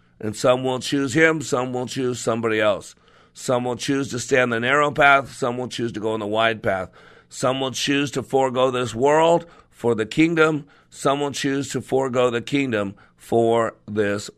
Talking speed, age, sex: 195 wpm, 50-69, male